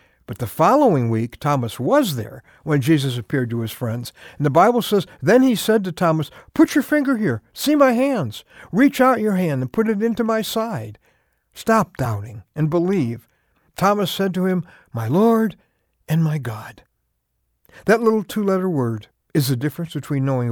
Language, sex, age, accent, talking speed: English, male, 60-79, American, 180 wpm